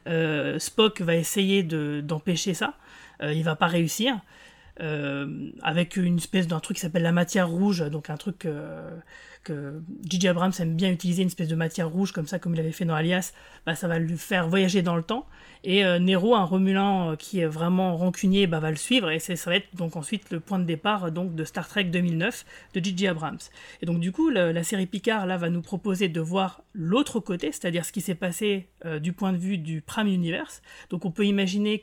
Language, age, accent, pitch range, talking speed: French, 30-49, French, 170-200 Hz, 225 wpm